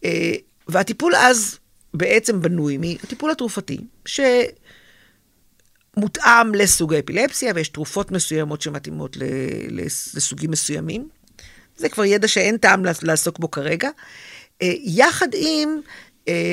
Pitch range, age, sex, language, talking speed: 170-230 Hz, 50-69, female, Hebrew, 90 wpm